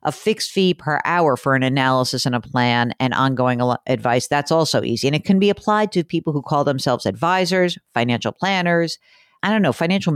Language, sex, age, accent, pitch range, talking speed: English, female, 50-69, American, 130-170 Hz, 200 wpm